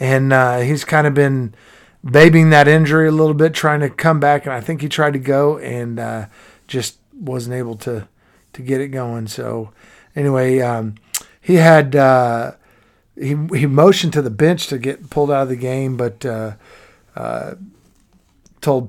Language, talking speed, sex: English, 175 wpm, male